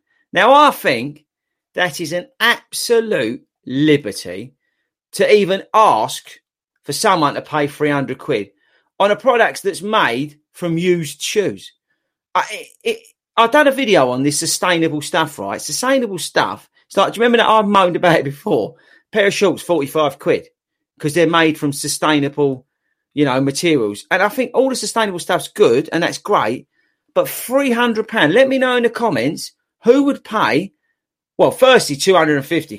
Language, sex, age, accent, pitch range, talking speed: English, male, 40-59, British, 150-240 Hz, 170 wpm